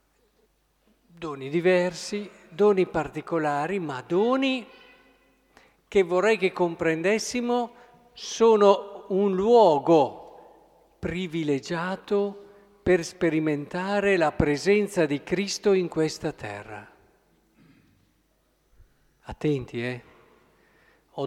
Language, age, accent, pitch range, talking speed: Italian, 50-69, native, 150-210 Hz, 75 wpm